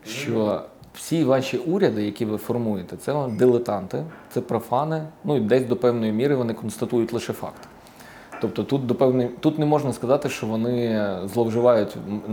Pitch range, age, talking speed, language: 110-150 Hz, 20-39, 140 wpm, Ukrainian